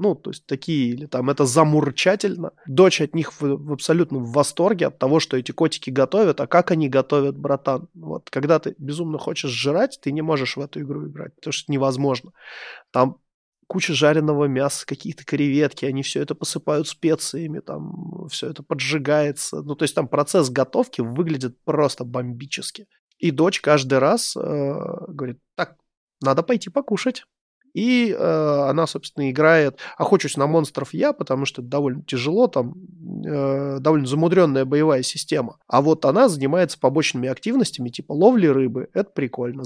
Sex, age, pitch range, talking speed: male, 20-39, 135-165 Hz, 165 wpm